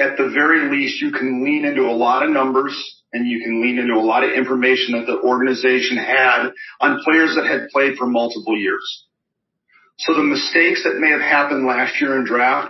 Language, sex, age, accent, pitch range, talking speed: English, male, 40-59, American, 125-180 Hz, 210 wpm